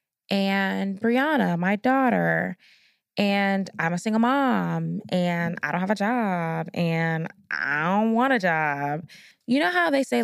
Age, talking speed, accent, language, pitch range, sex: 20-39, 150 wpm, American, English, 175-235 Hz, female